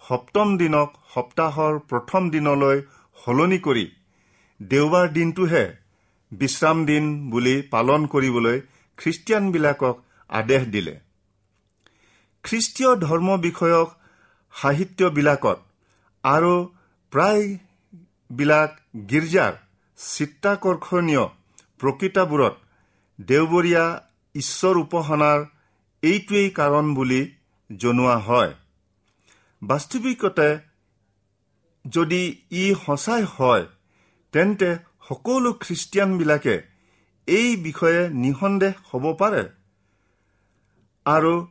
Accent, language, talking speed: Indian, English, 65 wpm